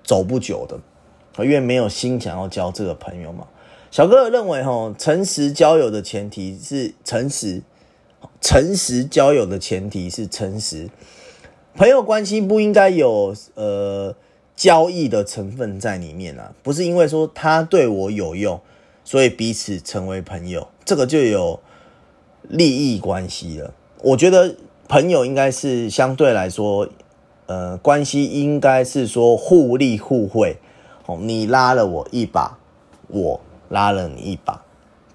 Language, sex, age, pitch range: Chinese, male, 30-49, 100-145 Hz